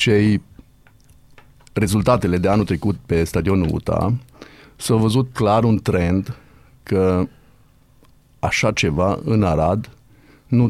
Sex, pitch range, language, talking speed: male, 100-130 Hz, Romanian, 105 wpm